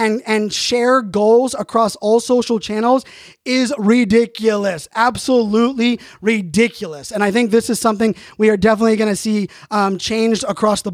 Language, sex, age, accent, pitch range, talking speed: English, male, 20-39, American, 215-250 Hz, 155 wpm